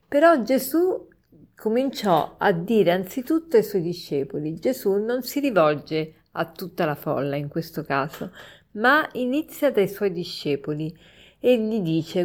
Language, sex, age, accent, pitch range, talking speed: Italian, female, 50-69, native, 165-240 Hz, 135 wpm